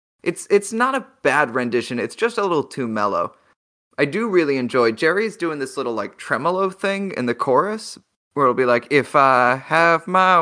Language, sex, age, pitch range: English, male, 20-39, 115-175 Hz